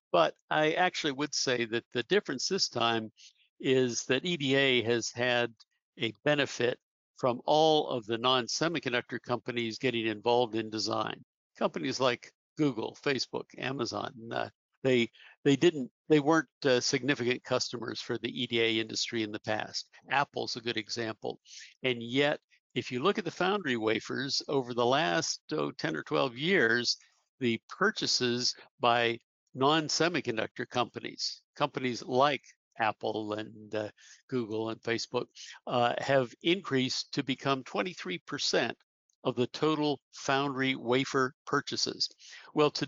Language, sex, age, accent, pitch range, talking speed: English, male, 60-79, American, 120-145 Hz, 135 wpm